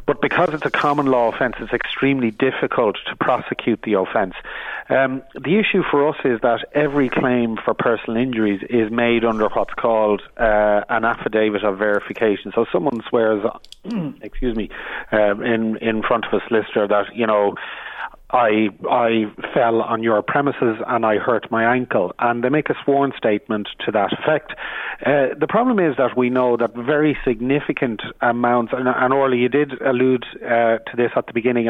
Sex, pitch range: male, 115-135 Hz